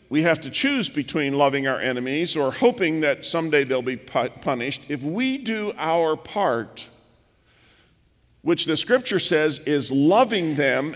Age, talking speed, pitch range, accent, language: 50-69, 150 wpm, 125-175 Hz, American, English